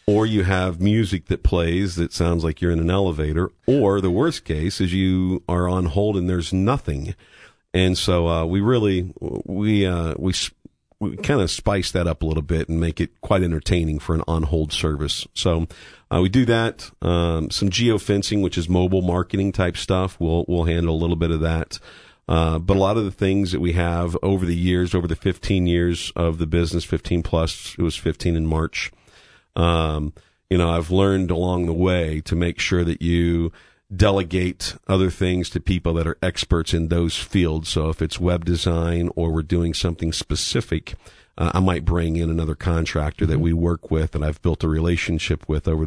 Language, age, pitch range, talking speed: English, 50-69, 80-95 Hz, 200 wpm